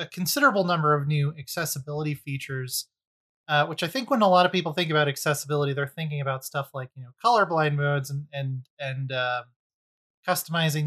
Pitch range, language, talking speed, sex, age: 145-180 Hz, English, 180 wpm, male, 30-49